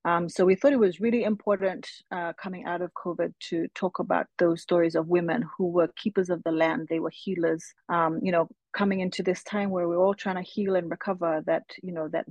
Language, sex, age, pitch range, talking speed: English, female, 30-49, 170-200 Hz, 235 wpm